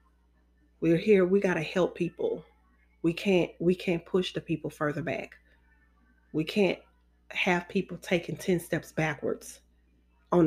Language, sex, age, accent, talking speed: English, female, 30-49, American, 145 wpm